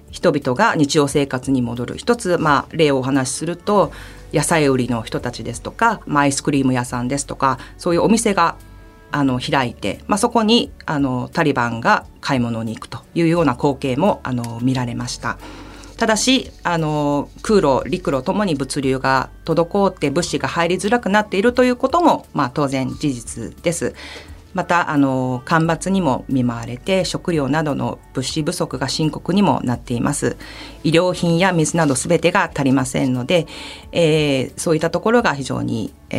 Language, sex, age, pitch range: Japanese, female, 40-59, 125-170 Hz